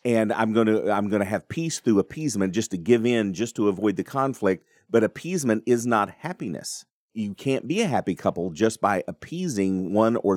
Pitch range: 100-130 Hz